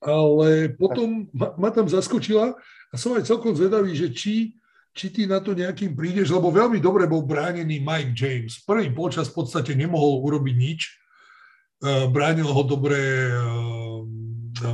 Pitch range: 145-185 Hz